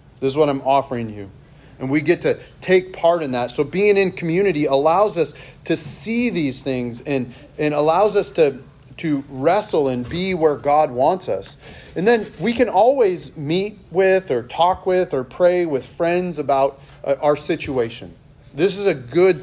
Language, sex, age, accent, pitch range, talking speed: English, male, 40-59, American, 140-180 Hz, 180 wpm